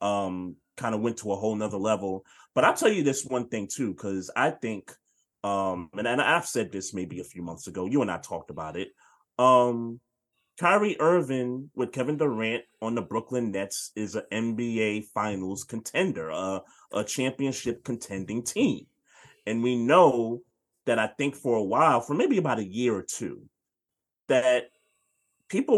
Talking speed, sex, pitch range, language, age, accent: 175 wpm, male, 110-145 Hz, English, 30-49, American